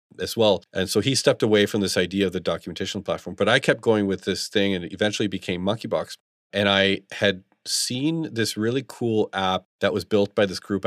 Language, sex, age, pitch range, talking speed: English, male, 40-59, 95-110 Hz, 220 wpm